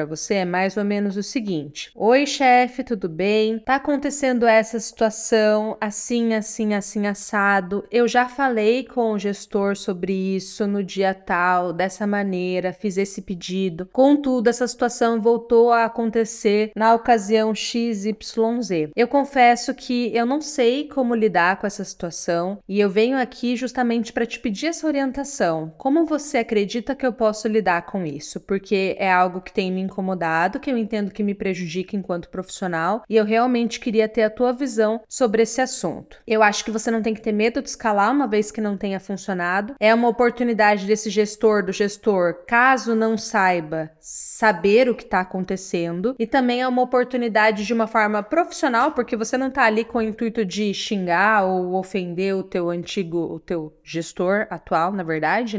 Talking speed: 175 wpm